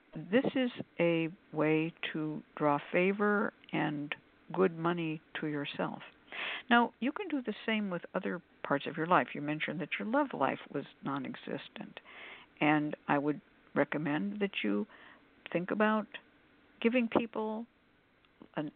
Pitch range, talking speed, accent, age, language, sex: 155-220 Hz, 140 wpm, American, 60-79, English, female